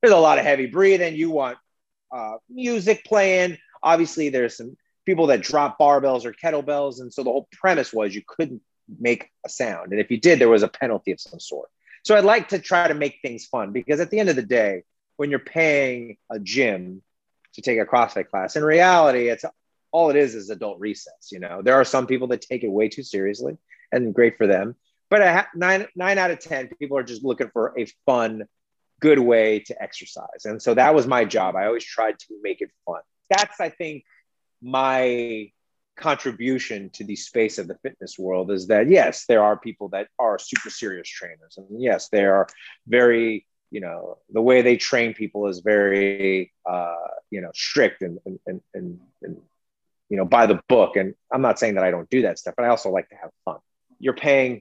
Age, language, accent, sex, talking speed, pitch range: 30-49, English, American, male, 210 wpm, 110-165 Hz